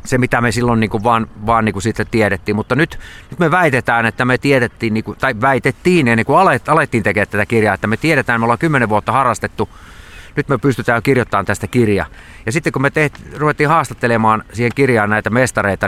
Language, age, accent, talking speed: Finnish, 30-49, native, 200 wpm